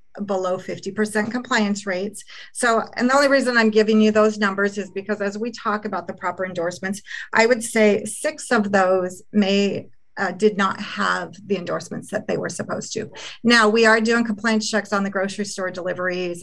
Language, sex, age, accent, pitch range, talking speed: English, female, 40-59, American, 190-225 Hz, 190 wpm